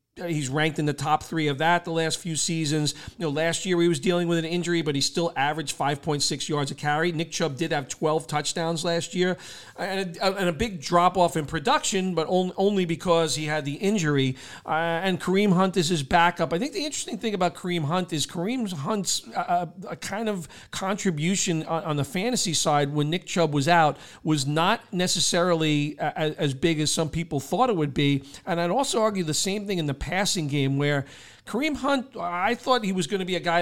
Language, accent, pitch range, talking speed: English, American, 150-180 Hz, 220 wpm